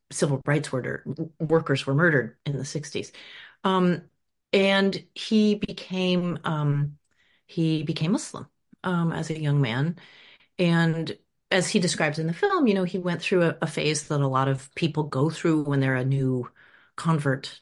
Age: 30-49